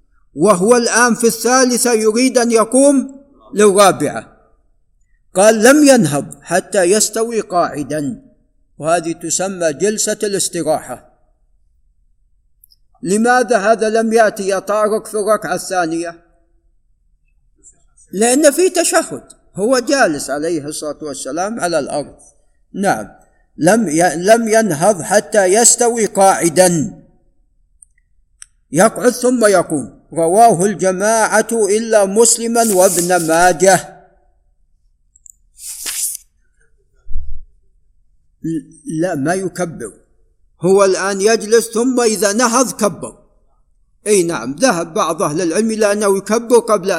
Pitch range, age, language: 165-225 Hz, 50-69, Arabic